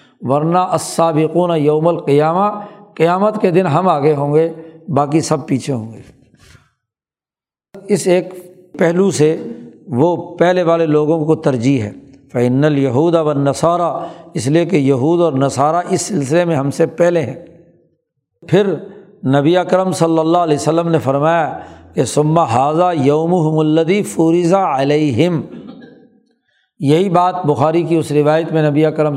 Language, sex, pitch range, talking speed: Urdu, male, 150-180 Hz, 140 wpm